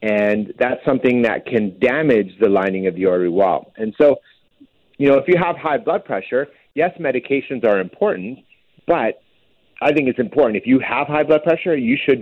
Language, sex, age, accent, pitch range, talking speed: English, male, 30-49, American, 105-150 Hz, 190 wpm